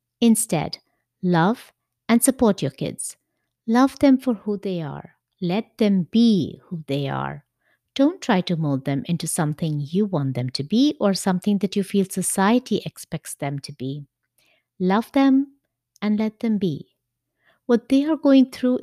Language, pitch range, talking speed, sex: English, 160-225 Hz, 165 wpm, female